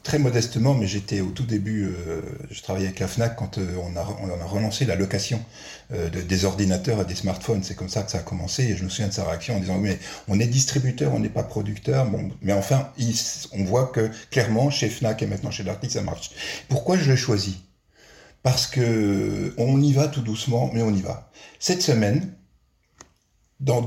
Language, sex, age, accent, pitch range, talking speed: French, male, 50-69, French, 105-150 Hz, 220 wpm